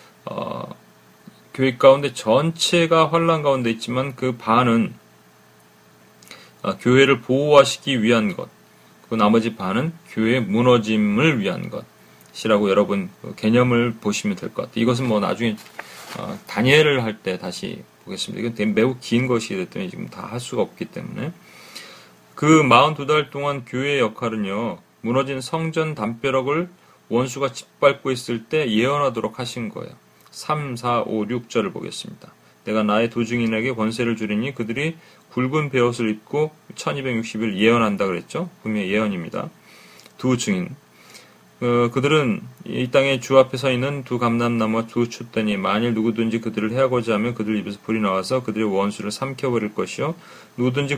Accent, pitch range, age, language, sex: native, 110-140 Hz, 40-59, Korean, male